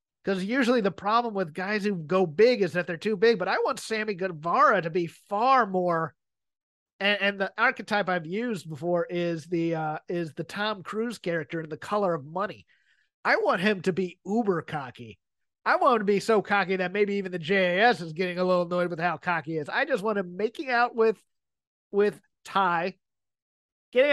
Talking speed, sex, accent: 205 wpm, male, American